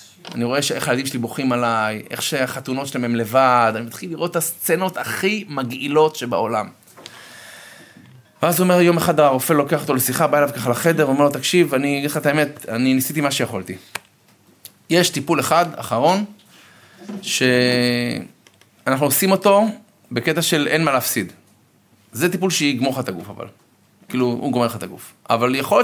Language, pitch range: Hebrew, 125-170 Hz